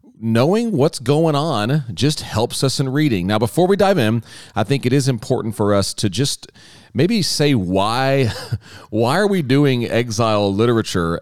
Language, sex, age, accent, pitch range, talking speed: English, male, 40-59, American, 105-145 Hz, 170 wpm